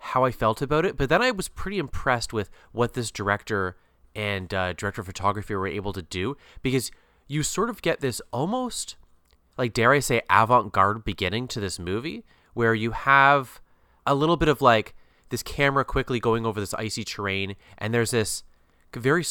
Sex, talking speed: male, 185 wpm